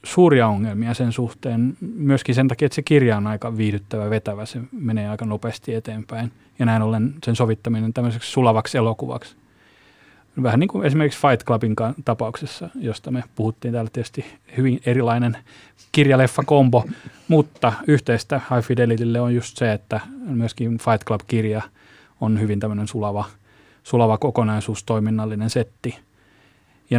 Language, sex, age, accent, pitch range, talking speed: Finnish, male, 30-49, native, 110-130 Hz, 135 wpm